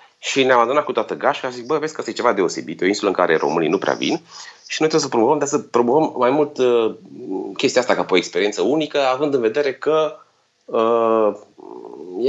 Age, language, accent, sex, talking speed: 30-49, Romanian, native, male, 215 wpm